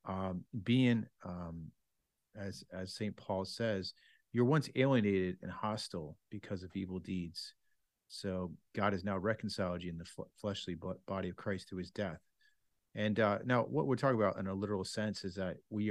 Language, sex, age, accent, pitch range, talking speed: English, male, 40-59, American, 95-120 Hz, 180 wpm